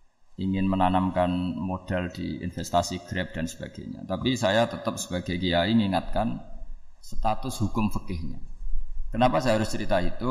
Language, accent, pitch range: Indonesian, native, 95-120 Hz